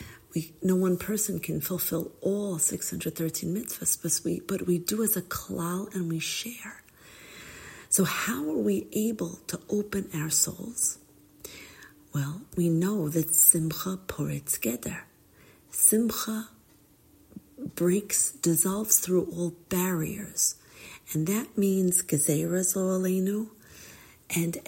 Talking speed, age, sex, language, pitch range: 115 wpm, 50-69, female, English, 160-200 Hz